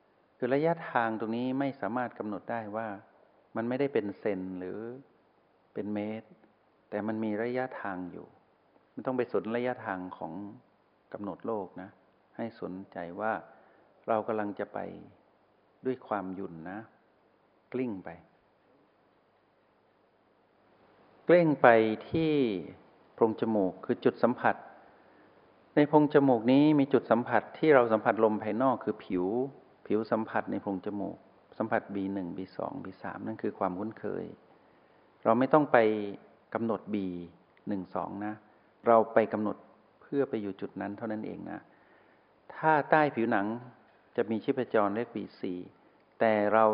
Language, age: Thai, 60-79